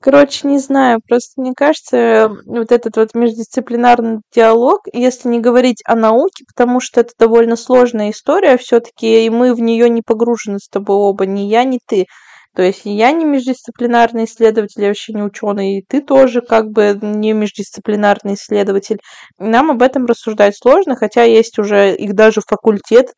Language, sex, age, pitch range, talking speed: Russian, female, 20-39, 205-250 Hz, 170 wpm